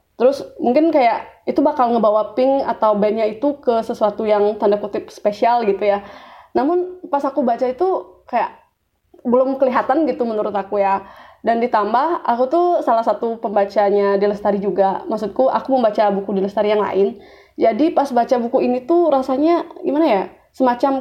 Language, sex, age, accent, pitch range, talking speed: Indonesian, female, 20-39, native, 220-290 Hz, 165 wpm